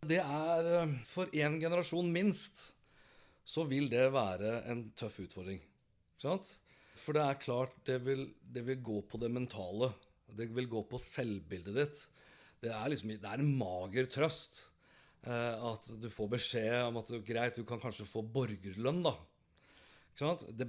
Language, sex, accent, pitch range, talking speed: English, male, Swedish, 110-140 Hz, 160 wpm